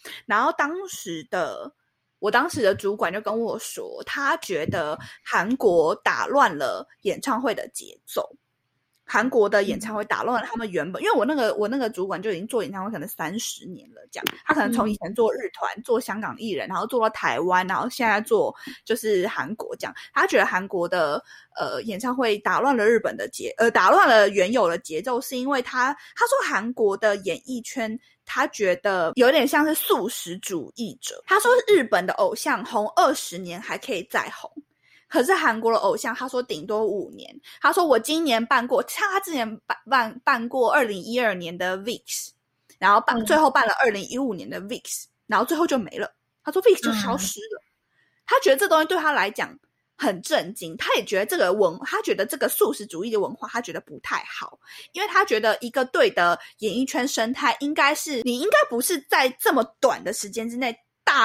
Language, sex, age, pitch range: Chinese, female, 20-39, 220-315 Hz